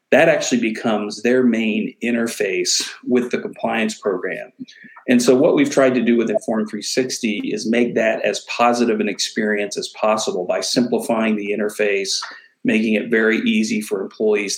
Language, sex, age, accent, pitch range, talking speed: English, male, 40-59, American, 110-145 Hz, 160 wpm